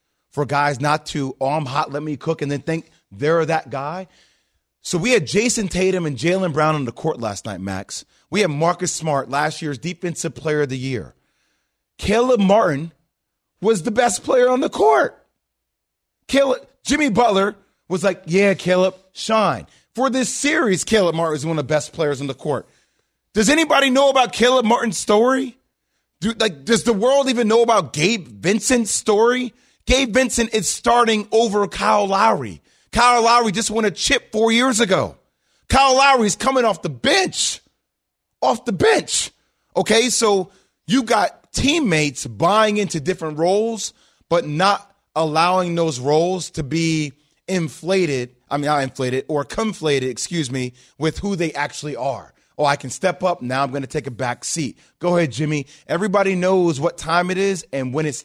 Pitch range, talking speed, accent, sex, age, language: 150-220 Hz, 175 wpm, American, male, 30-49, English